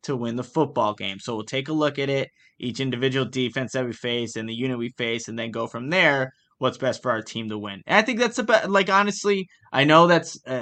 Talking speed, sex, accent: 260 wpm, male, American